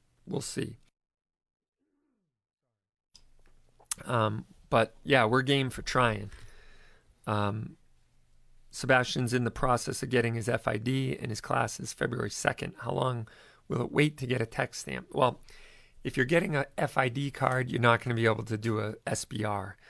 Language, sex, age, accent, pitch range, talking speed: English, male, 40-59, American, 105-130 Hz, 150 wpm